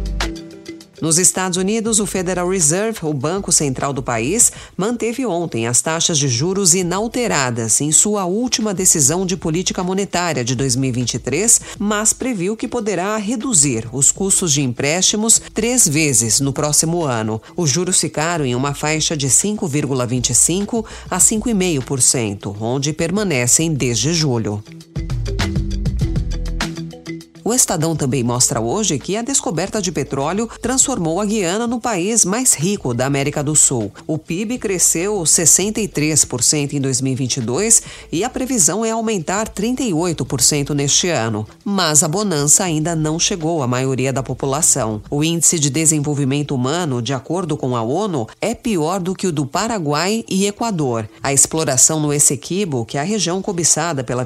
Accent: Brazilian